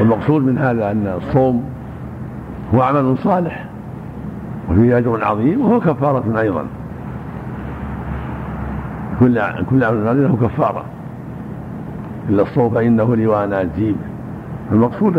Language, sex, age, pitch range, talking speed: Arabic, male, 60-79, 110-140 Hz, 95 wpm